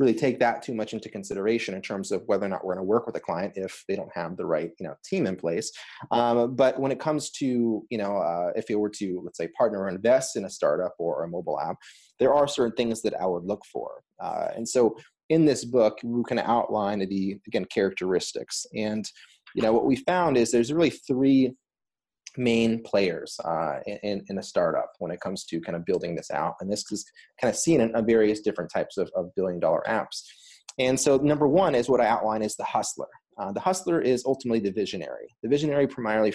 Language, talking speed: English, 225 wpm